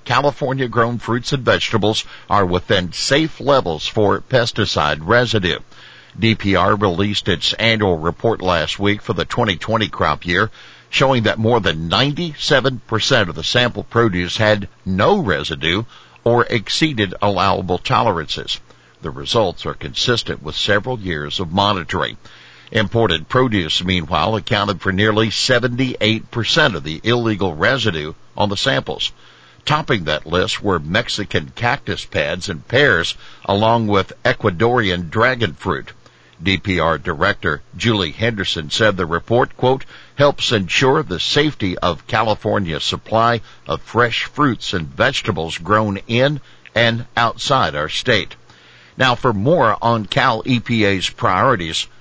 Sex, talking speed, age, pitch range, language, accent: male, 125 wpm, 60-79, 90-120 Hz, English, American